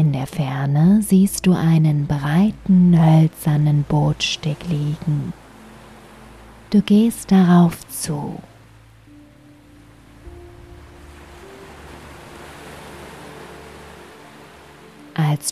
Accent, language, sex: German, German, female